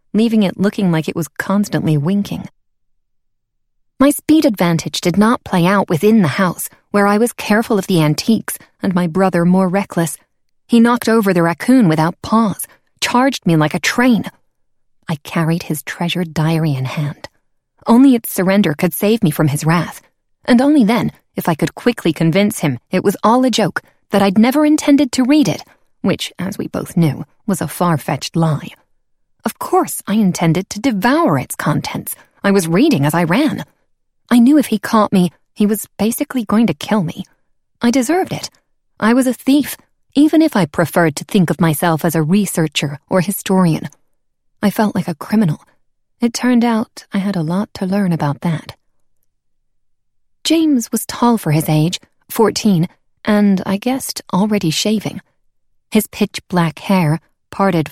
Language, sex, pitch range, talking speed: English, female, 170-225 Hz, 175 wpm